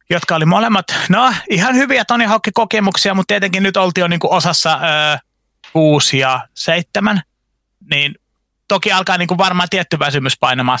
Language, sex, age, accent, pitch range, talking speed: Finnish, male, 30-49, native, 155-195 Hz, 135 wpm